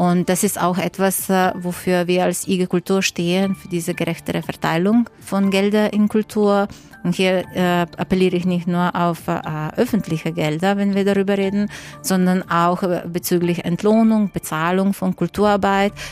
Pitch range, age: 175-195 Hz, 30-49